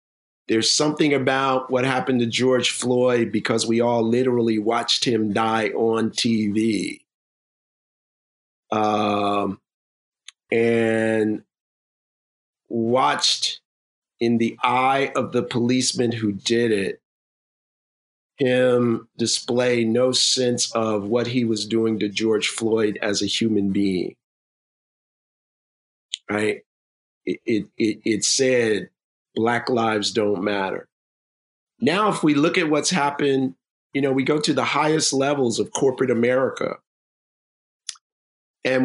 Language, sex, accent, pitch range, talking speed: English, male, American, 110-135 Hz, 115 wpm